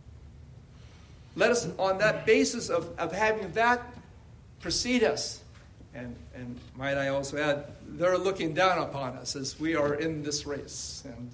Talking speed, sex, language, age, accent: 155 wpm, male, English, 50-69, American